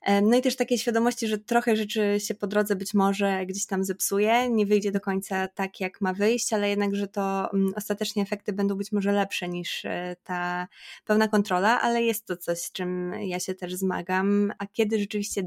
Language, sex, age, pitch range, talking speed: Polish, female, 20-39, 180-210 Hz, 195 wpm